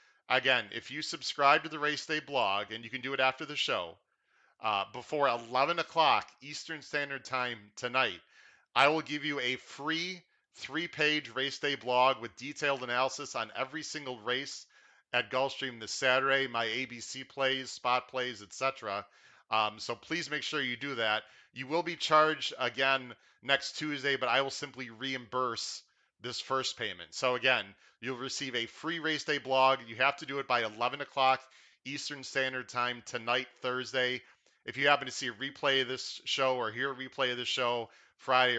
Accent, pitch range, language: American, 120-140 Hz, English